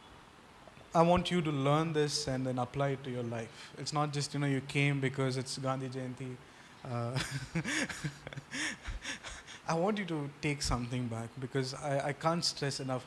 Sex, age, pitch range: male, 20-39, 125-155 Hz